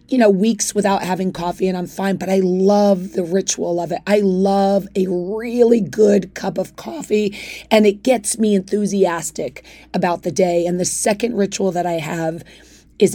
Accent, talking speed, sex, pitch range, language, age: American, 185 wpm, female, 180-210 Hz, English, 30-49